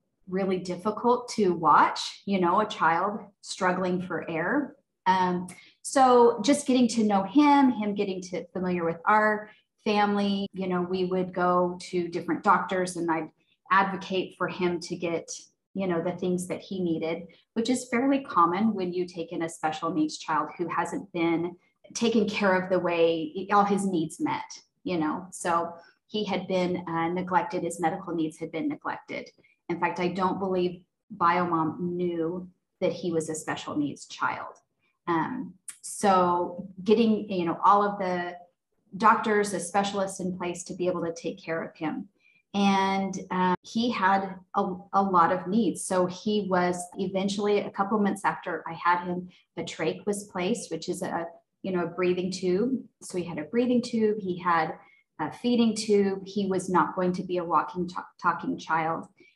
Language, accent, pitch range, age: English, American, 175-205 Hz, 30-49